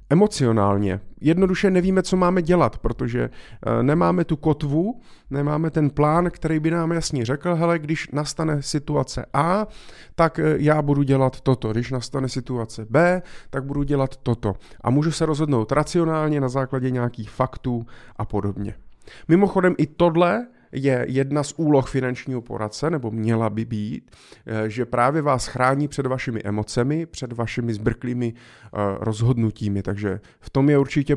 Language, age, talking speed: Czech, 30-49, 145 wpm